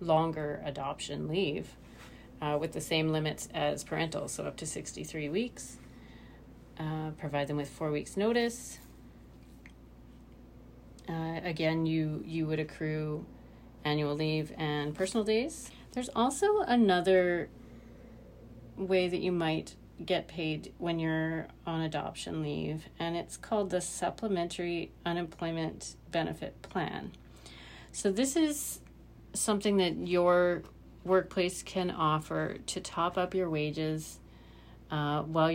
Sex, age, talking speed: female, 40-59, 120 wpm